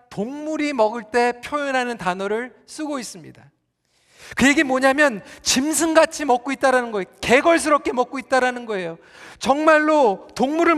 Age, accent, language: 40-59, native, Korean